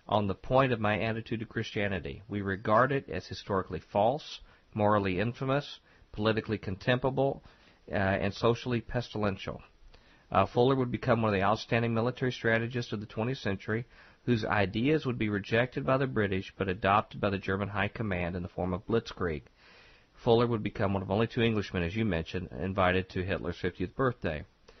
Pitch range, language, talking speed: 95-115 Hz, English, 175 wpm